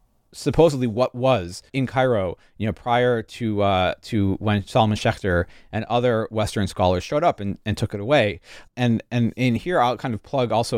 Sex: male